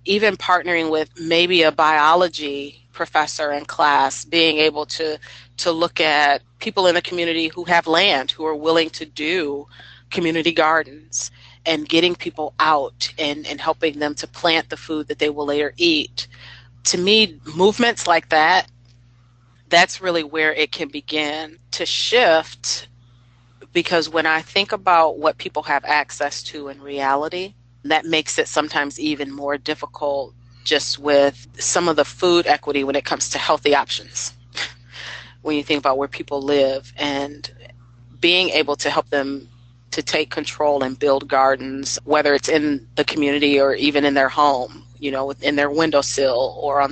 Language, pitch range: English, 135-160 Hz